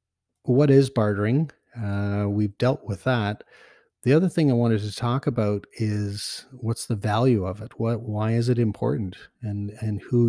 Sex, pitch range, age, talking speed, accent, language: male, 100-115 Hz, 40-59, 175 wpm, American, English